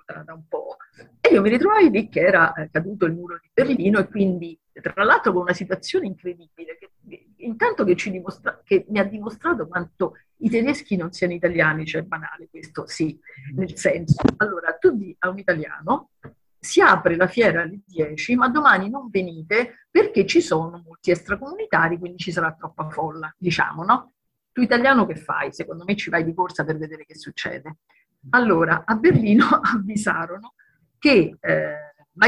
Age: 50-69